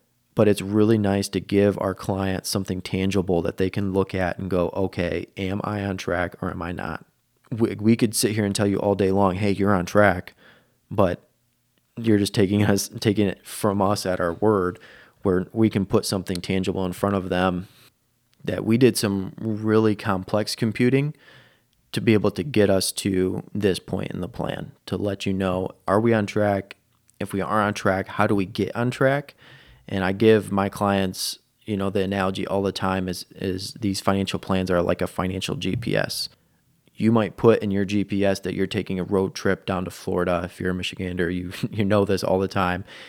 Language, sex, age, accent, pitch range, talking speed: English, male, 30-49, American, 90-105 Hz, 205 wpm